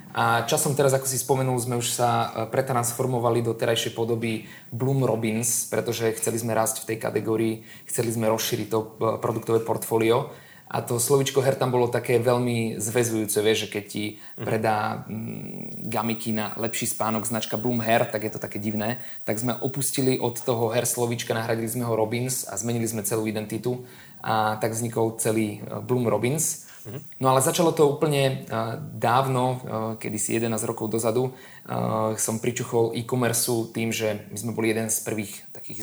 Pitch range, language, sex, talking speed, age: 110-125 Hz, Slovak, male, 165 wpm, 20-39